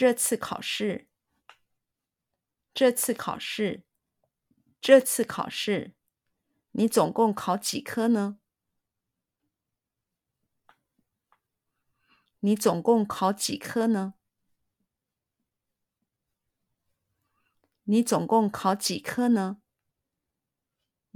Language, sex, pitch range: Chinese, female, 195-240 Hz